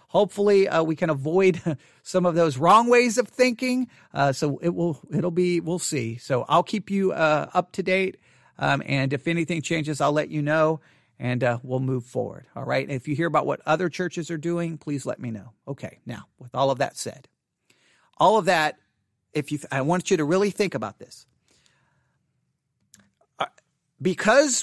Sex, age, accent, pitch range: male, 40-59, American, 145-200 Hz